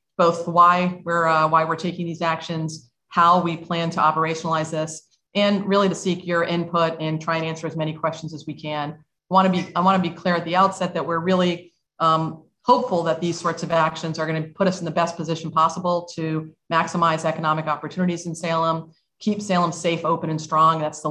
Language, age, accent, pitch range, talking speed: English, 40-59, American, 155-175 Hz, 220 wpm